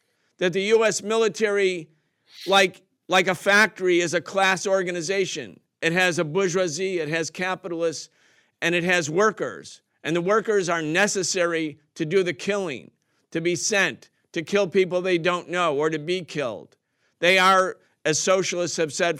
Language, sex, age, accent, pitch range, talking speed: English, male, 50-69, American, 160-190 Hz, 160 wpm